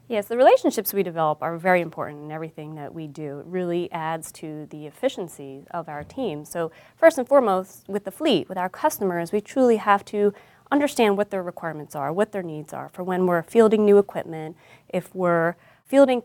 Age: 30-49